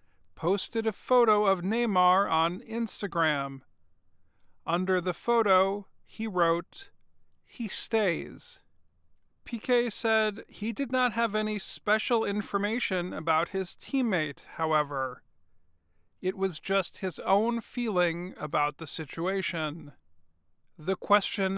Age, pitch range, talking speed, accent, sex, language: 40-59, 150-200 Hz, 105 wpm, American, male, English